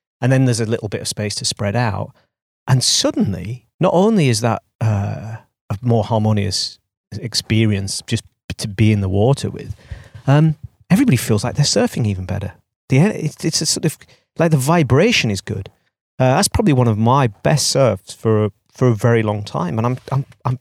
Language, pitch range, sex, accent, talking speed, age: English, 105-130 Hz, male, British, 190 wpm, 40-59